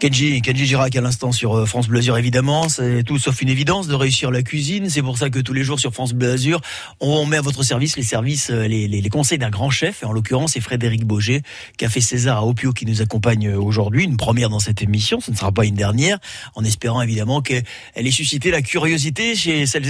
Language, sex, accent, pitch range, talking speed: French, male, French, 120-160 Hz, 230 wpm